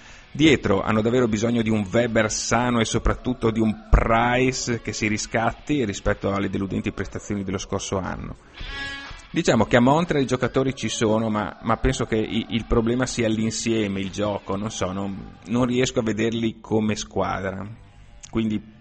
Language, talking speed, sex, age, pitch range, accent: Italian, 155 wpm, male, 30-49, 105-125 Hz, native